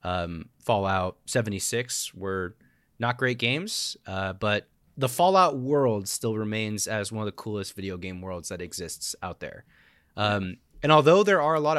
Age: 20-39